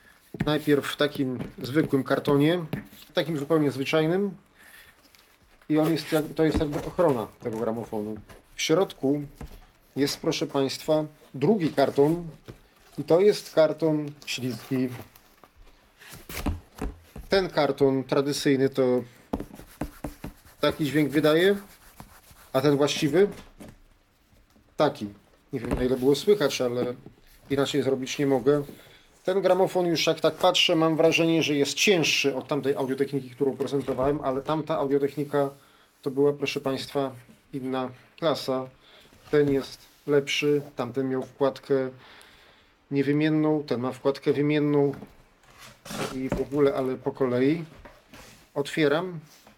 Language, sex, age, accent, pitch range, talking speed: Polish, male, 30-49, native, 130-155 Hz, 115 wpm